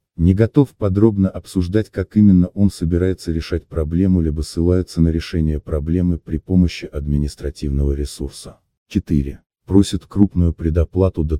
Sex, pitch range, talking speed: male, 75-90 Hz, 125 wpm